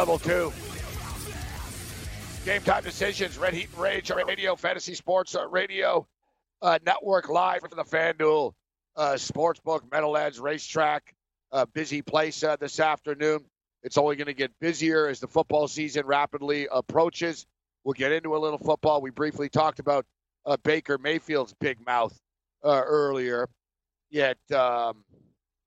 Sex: male